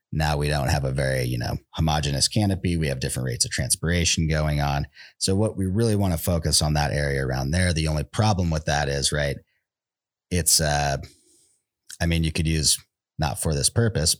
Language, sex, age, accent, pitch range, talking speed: English, male, 30-49, American, 70-90 Hz, 205 wpm